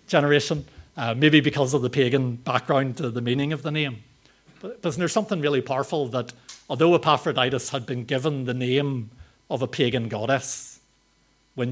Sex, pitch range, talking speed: male, 120-145 Hz, 175 wpm